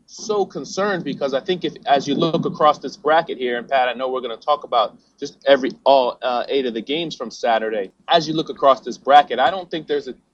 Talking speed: 250 wpm